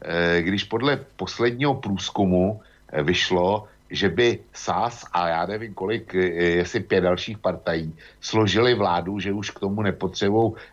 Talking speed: 130 wpm